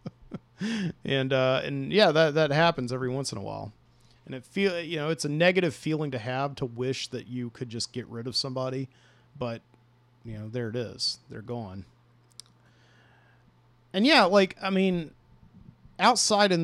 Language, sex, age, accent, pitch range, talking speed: English, male, 40-59, American, 120-150 Hz, 175 wpm